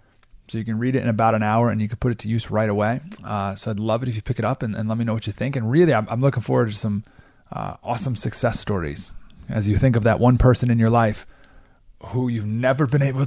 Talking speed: 285 wpm